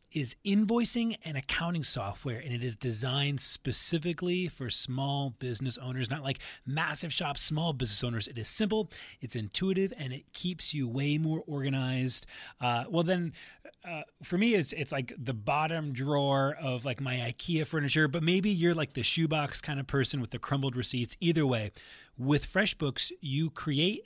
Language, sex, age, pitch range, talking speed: English, male, 30-49, 130-170 Hz, 170 wpm